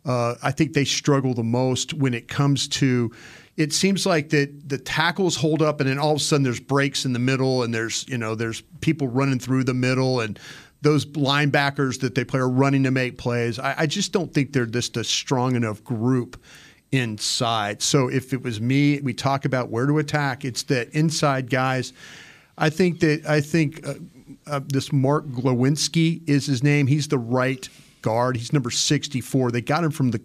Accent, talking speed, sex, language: American, 205 wpm, male, English